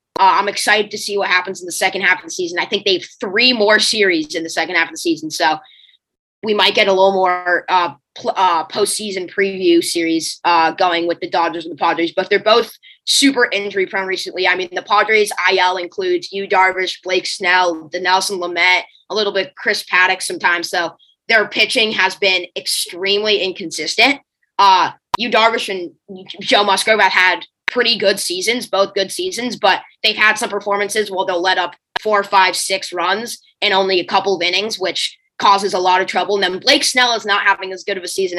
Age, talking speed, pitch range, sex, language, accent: 20-39, 205 wpm, 180-210 Hz, female, English, American